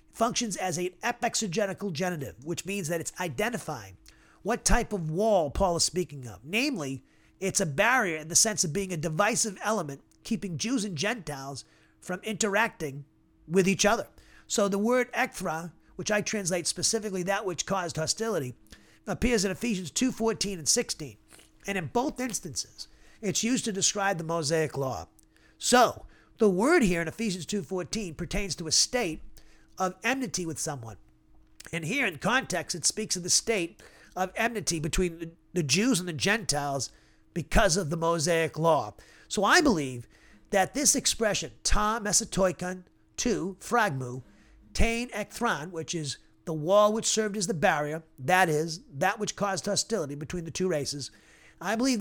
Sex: male